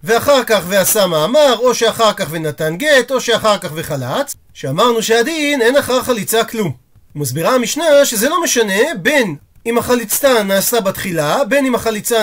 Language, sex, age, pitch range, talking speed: Hebrew, male, 40-59, 195-255 Hz, 155 wpm